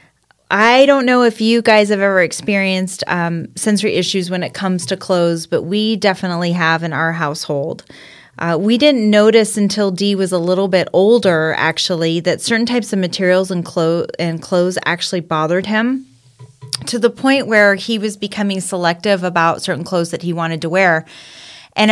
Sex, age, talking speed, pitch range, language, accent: female, 30-49, 175 wpm, 170-210 Hz, English, American